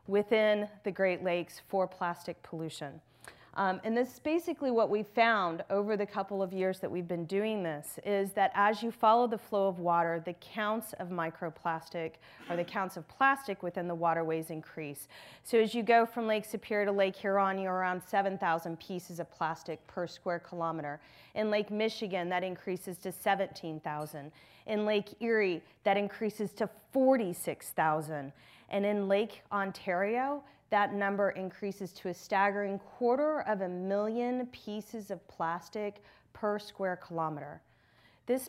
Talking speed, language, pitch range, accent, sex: 155 wpm, English, 175-215 Hz, American, female